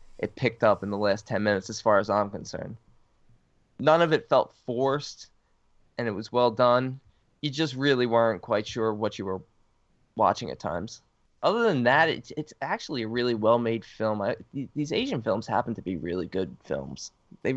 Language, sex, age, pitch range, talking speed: English, male, 20-39, 110-135 Hz, 190 wpm